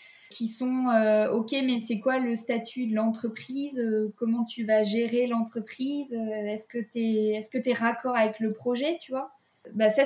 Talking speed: 160 wpm